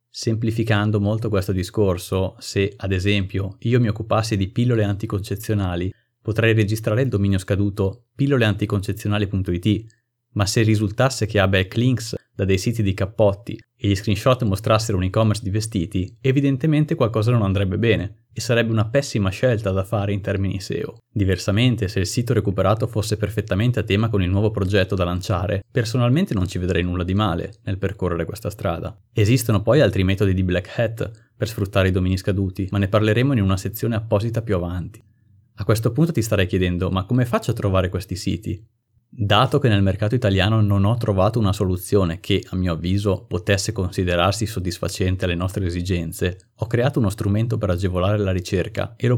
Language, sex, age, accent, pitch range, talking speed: Italian, male, 30-49, native, 95-115 Hz, 175 wpm